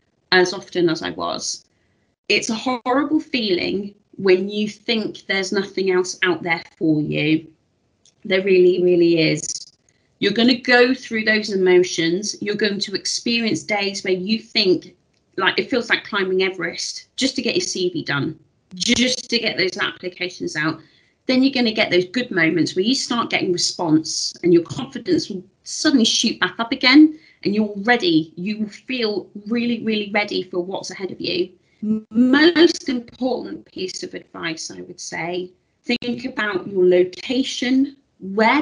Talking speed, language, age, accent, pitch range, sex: 160 wpm, English, 30-49, British, 180-245 Hz, female